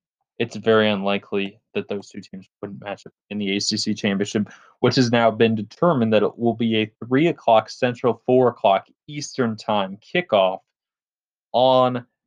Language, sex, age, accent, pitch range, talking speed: English, male, 20-39, American, 100-120 Hz, 160 wpm